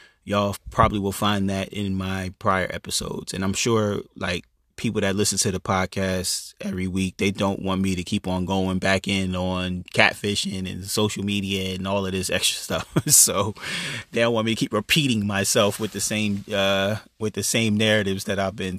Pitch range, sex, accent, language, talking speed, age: 95-110 Hz, male, American, English, 200 wpm, 20-39